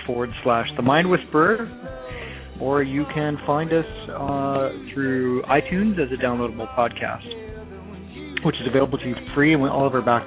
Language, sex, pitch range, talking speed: English, male, 120-145 Hz, 165 wpm